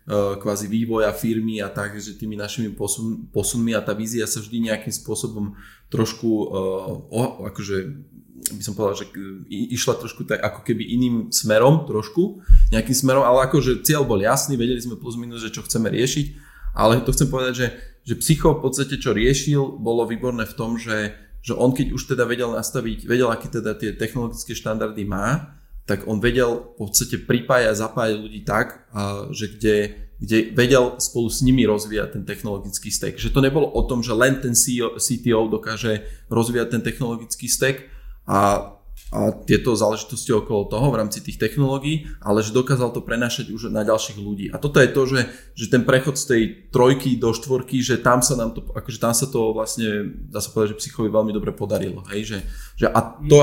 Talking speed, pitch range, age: 190 wpm, 110-130 Hz, 20-39